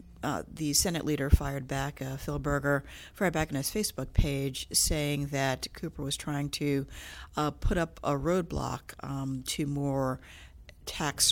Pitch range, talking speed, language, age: 130-150 Hz, 160 wpm, English, 50-69